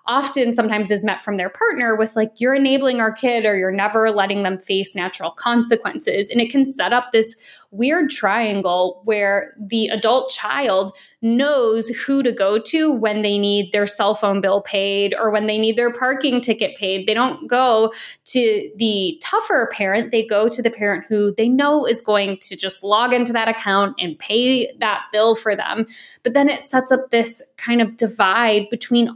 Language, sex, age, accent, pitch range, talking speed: English, female, 20-39, American, 205-245 Hz, 190 wpm